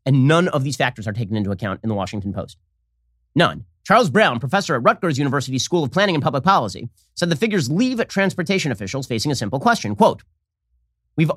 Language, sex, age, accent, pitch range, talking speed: English, male, 30-49, American, 115-180 Hz, 200 wpm